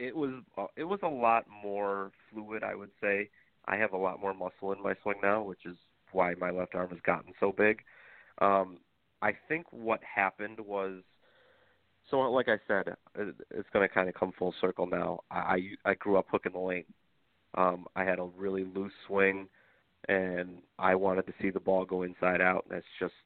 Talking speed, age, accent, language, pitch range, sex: 195 wpm, 30-49, American, English, 90-100 Hz, male